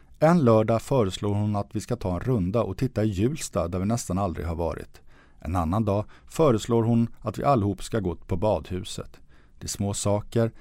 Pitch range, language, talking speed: 85-115 Hz, English, 205 wpm